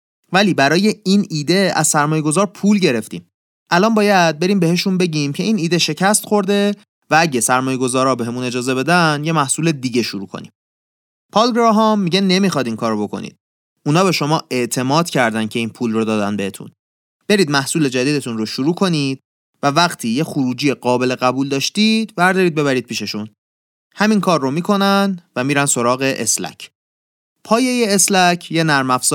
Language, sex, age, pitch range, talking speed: Persian, male, 30-49, 125-185 Hz, 155 wpm